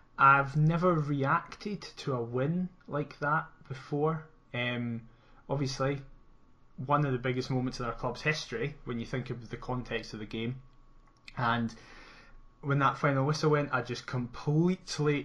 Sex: male